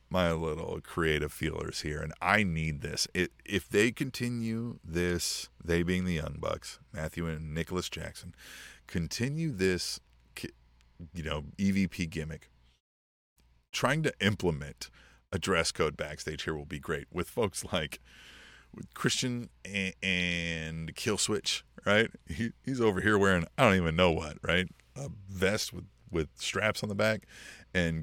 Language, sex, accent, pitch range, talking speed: English, male, American, 80-105 Hz, 150 wpm